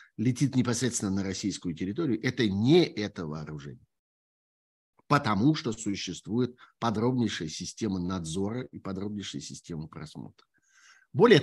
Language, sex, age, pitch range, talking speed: Russian, male, 50-69, 100-145 Hz, 105 wpm